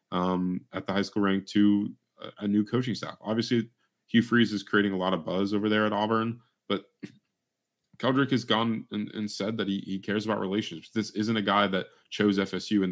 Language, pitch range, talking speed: English, 90-105 Hz, 210 wpm